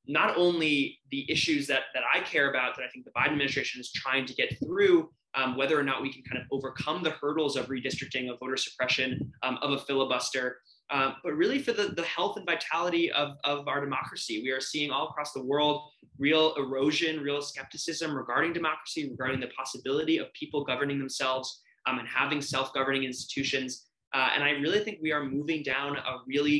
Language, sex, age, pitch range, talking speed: English, male, 20-39, 130-155 Hz, 200 wpm